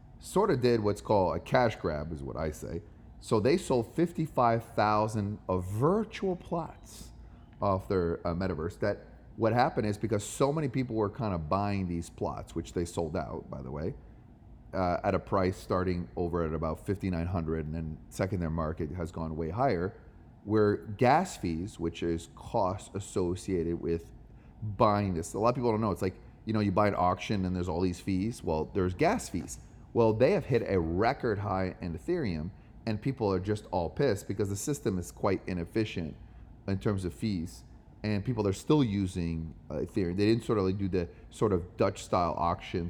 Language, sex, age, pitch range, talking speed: English, male, 30-49, 90-115 Hz, 195 wpm